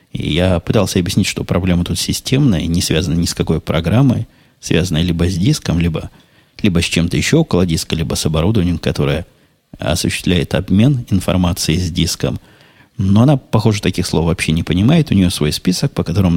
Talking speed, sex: 170 wpm, male